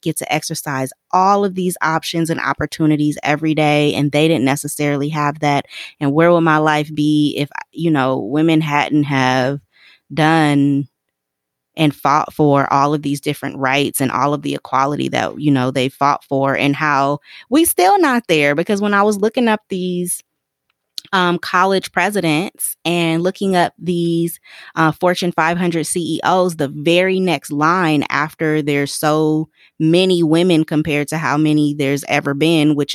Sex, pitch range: female, 145-180 Hz